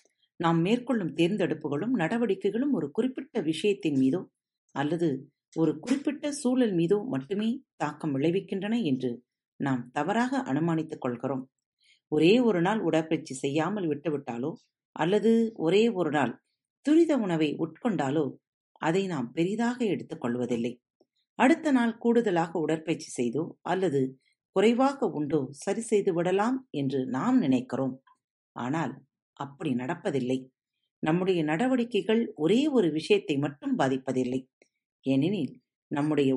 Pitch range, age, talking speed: 135-215 Hz, 40-59, 105 wpm